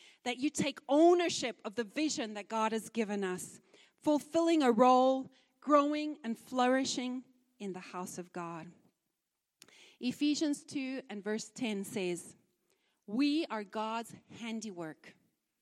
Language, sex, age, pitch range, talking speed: English, female, 40-59, 210-275 Hz, 125 wpm